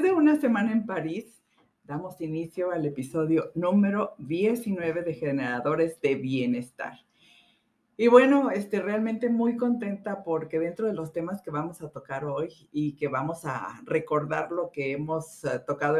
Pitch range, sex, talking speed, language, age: 145-205 Hz, female, 150 wpm, Spanish, 50-69